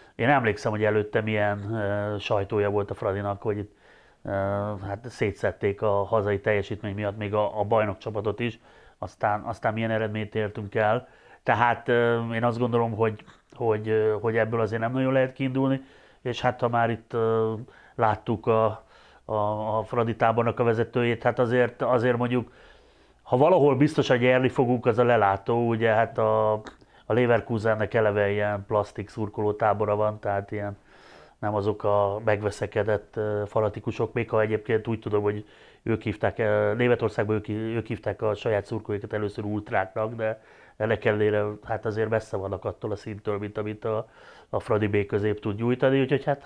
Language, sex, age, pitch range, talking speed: Hungarian, male, 30-49, 105-120 Hz, 165 wpm